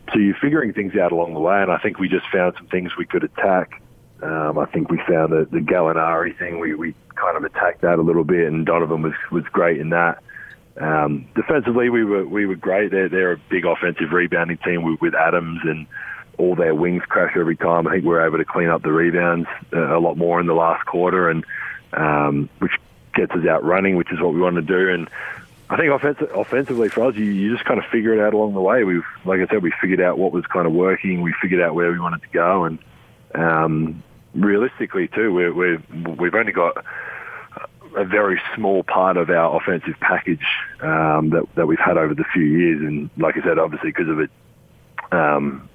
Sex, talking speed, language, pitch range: male, 225 wpm, English, 80-95 Hz